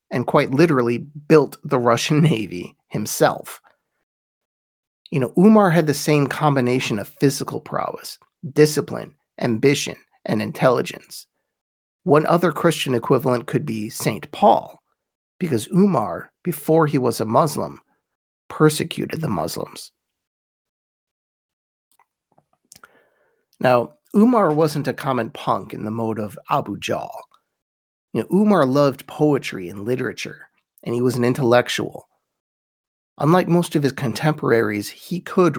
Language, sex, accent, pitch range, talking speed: English, male, American, 120-160 Hz, 120 wpm